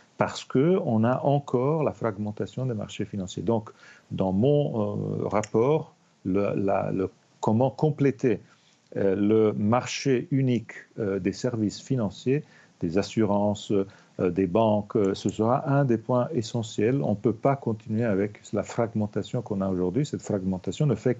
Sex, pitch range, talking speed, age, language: male, 100-125 Hz, 155 wpm, 40-59, French